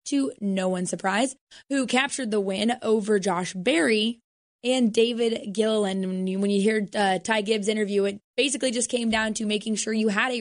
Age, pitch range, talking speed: 20-39, 205-250 Hz, 190 wpm